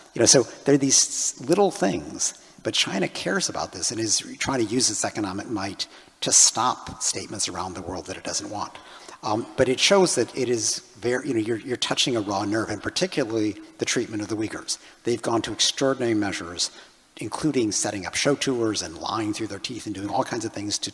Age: 50-69